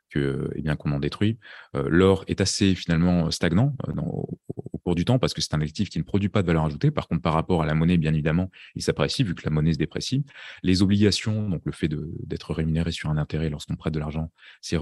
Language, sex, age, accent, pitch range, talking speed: French, male, 30-49, French, 80-95 Hz, 265 wpm